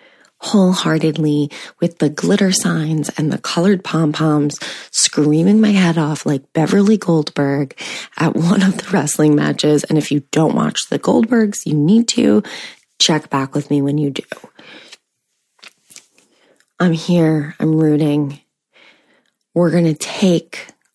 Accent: American